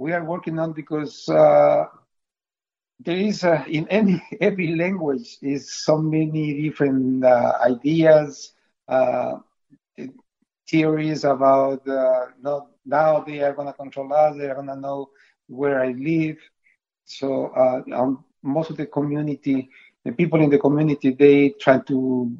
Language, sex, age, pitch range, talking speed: English, male, 60-79, 130-150 Hz, 135 wpm